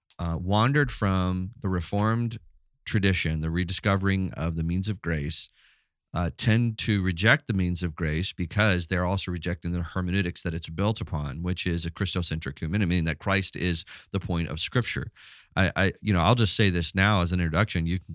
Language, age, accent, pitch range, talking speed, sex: English, 30-49, American, 85-110 Hz, 190 wpm, male